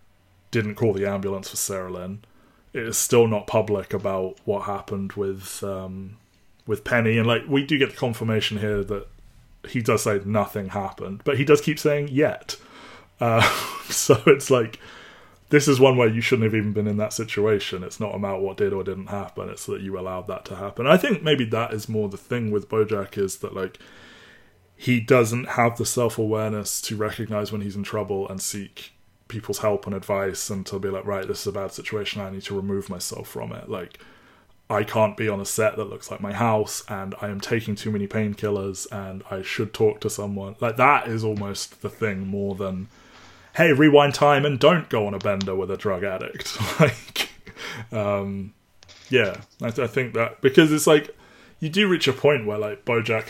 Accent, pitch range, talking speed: British, 100-115 Hz, 205 wpm